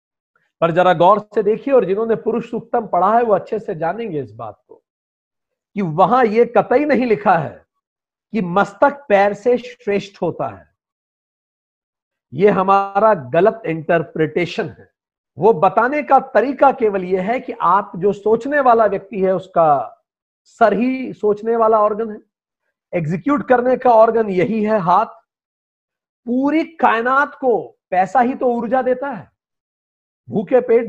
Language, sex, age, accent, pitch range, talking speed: Hindi, male, 50-69, native, 195-250 Hz, 150 wpm